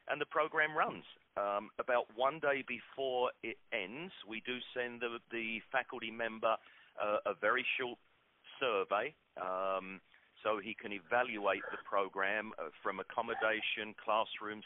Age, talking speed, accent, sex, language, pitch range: 40-59, 135 wpm, British, male, English, 95-120 Hz